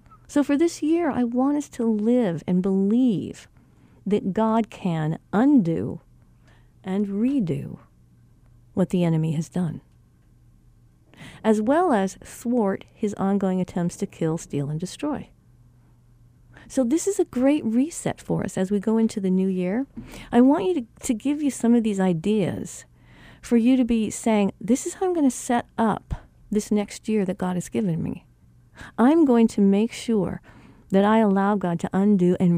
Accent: American